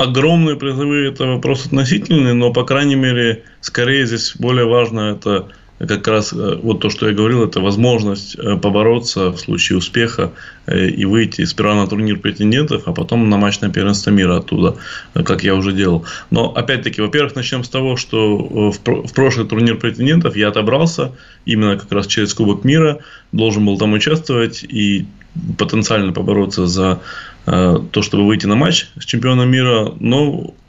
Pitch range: 105-130 Hz